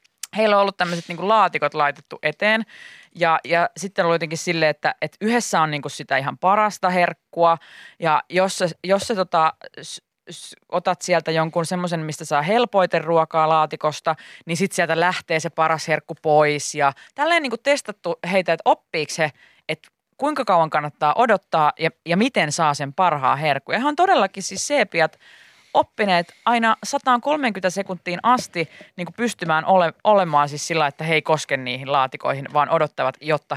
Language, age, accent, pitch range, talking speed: Finnish, 20-39, native, 155-220 Hz, 165 wpm